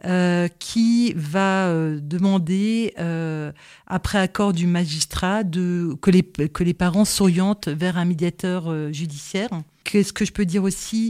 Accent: French